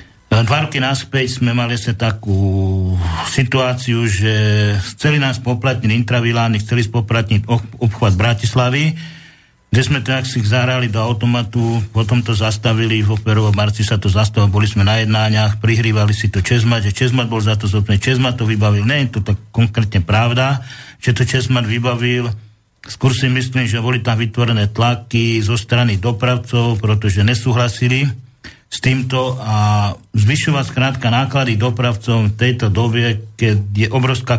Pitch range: 110-125 Hz